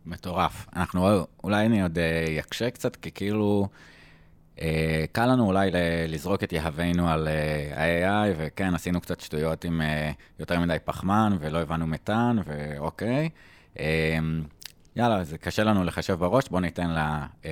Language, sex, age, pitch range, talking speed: Hebrew, male, 20-39, 80-95 Hz, 145 wpm